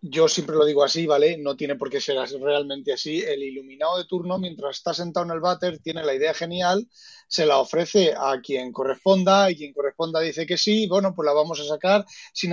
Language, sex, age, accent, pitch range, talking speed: Spanish, male, 30-49, Spanish, 165-250 Hz, 220 wpm